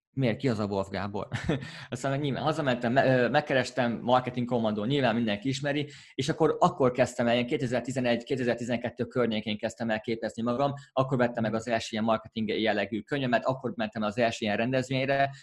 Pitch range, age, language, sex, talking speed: 115-135 Hz, 20-39, Hungarian, male, 165 wpm